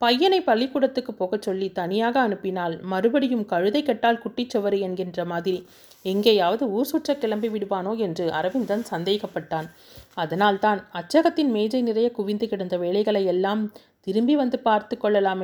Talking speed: 130 wpm